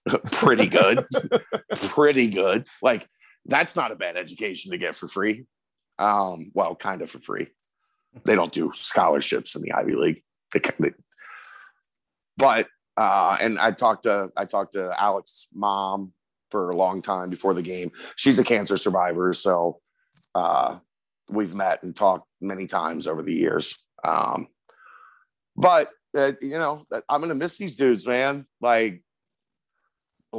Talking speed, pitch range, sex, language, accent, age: 145 wpm, 105-130 Hz, male, English, American, 50-69